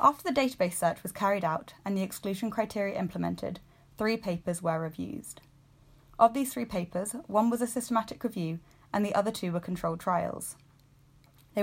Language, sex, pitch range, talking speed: English, female, 170-220 Hz, 170 wpm